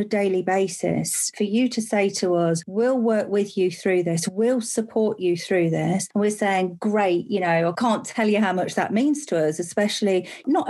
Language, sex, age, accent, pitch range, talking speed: English, female, 40-59, British, 180-215 Hz, 215 wpm